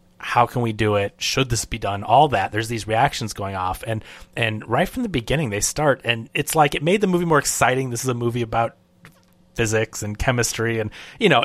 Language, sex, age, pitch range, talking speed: English, male, 30-49, 110-135 Hz, 230 wpm